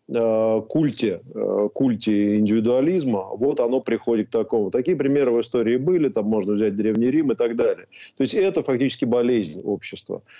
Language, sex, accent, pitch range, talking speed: Russian, male, native, 110-135 Hz, 155 wpm